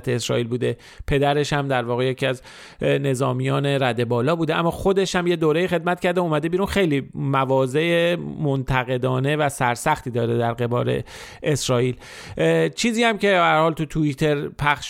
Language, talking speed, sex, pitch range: Persian, 150 wpm, male, 135-175 Hz